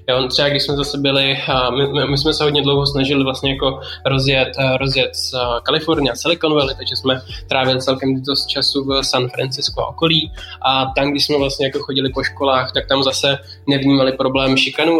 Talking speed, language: 190 wpm, Czech